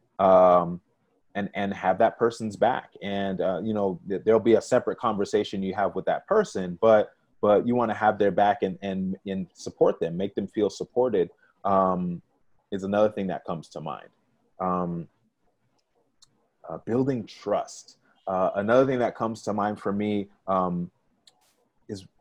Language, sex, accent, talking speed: English, male, American, 165 wpm